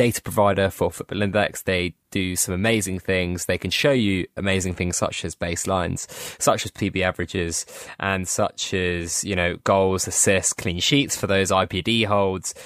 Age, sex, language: 20-39, male, English